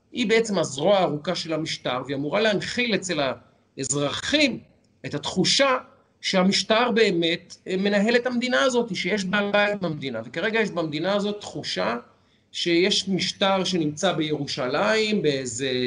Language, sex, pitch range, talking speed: Hebrew, male, 150-220 Hz, 120 wpm